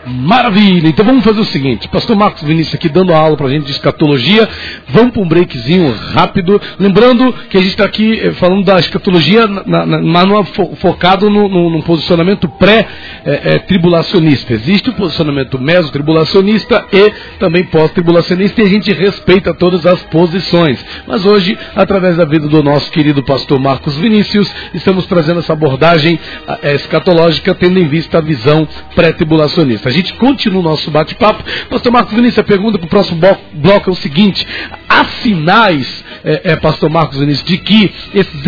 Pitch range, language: 160-205 Hz, English